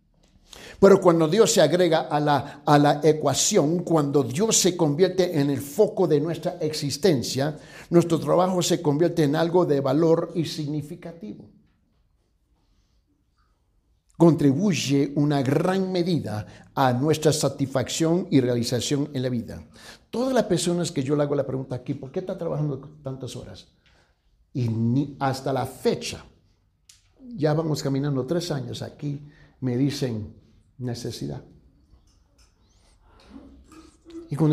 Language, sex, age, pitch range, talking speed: Spanish, male, 60-79, 125-170 Hz, 130 wpm